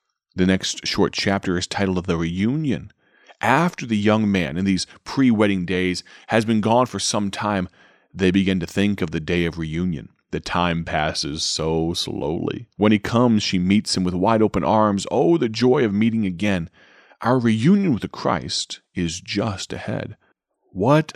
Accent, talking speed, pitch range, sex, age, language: American, 175 wpm, 90-115 Hz, male, 30-49, English